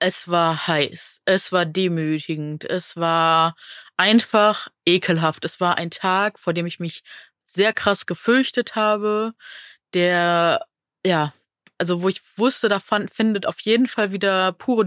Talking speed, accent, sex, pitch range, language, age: 145 wpm, German, female, 175-205 Hz, German, 20-39